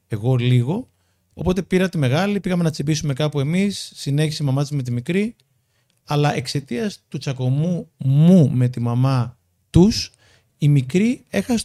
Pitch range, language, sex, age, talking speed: 125-175 Hz, Greek, male, 30-49, 155 wpm